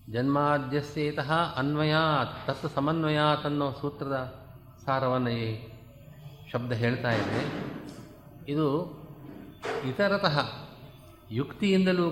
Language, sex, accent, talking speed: Kannada, male, native, 70 wpm